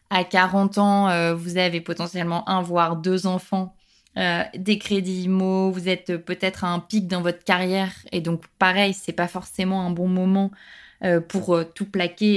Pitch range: 180-215 Hz